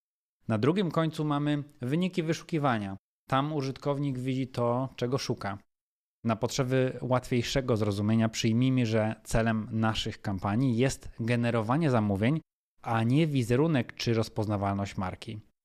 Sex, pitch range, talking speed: male, 110-140 Hz, 115 wpm